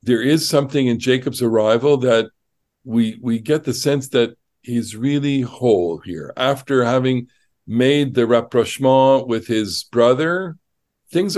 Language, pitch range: English, 110-145 Hz